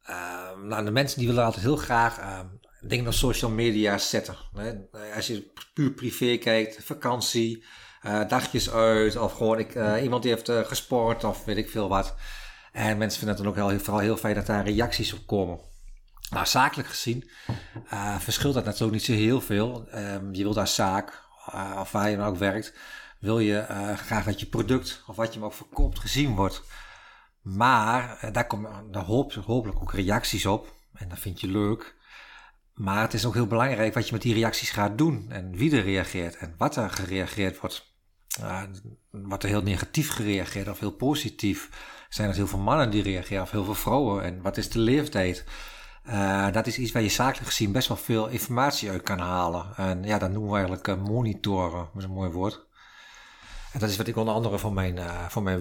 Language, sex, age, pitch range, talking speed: Dutch, male, 50-69, 100-115 Hz, 205 wpm